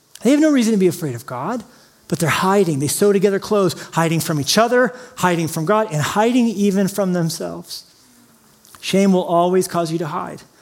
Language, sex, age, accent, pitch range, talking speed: English, male, 40-59, American, 160-195 Hz, 200 wpm